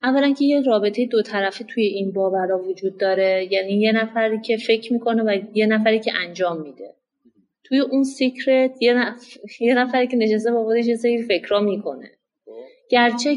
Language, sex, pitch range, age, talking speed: Persian, female, 190-235 Hz, 30-49, 165 wpm